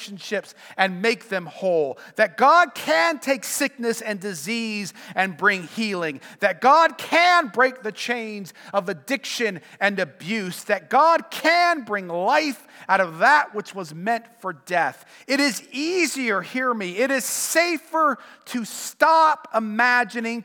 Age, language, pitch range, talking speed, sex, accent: 40-59, English, 195-270 Hz, 145 wpm, male, American